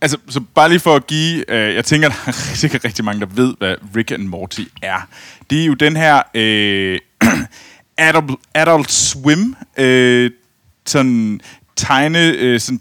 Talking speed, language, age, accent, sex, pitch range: 165 wpm, Danish, 30-49, native, male, 110-155 Hz